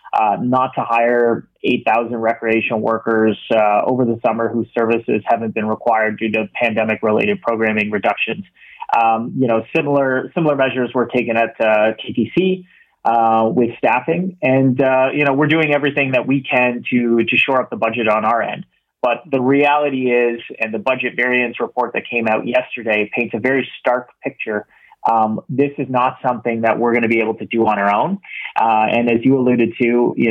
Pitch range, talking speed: 110-130 Hz, 190 wpm